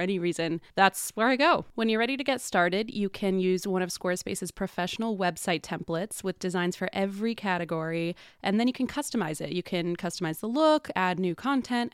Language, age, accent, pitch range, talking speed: English, 20-39, American, 180-225 Hz, 200 wpm